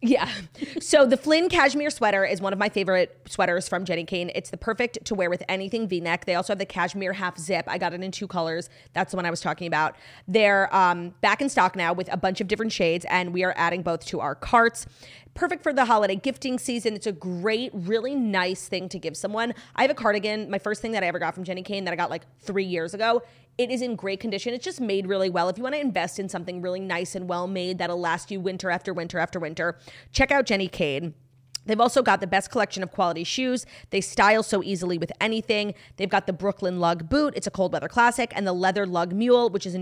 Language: English